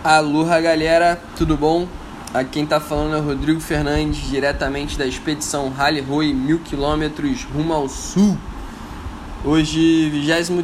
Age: 10-29